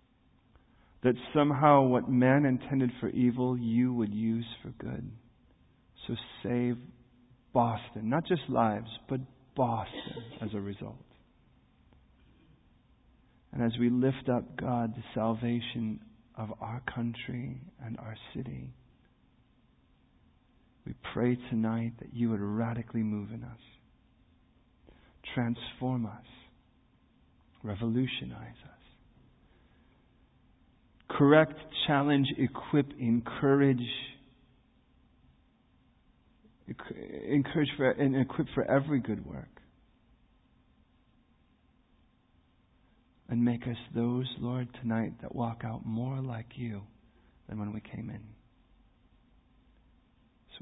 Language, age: English, 50-69